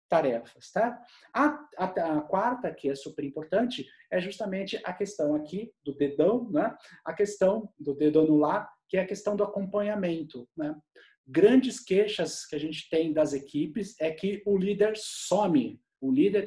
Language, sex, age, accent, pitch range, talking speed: Portuguese, male, 50-69, Brazilian, 160-215 Hz, 170 wpm